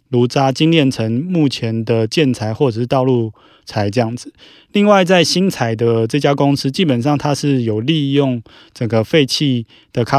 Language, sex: Chinese, male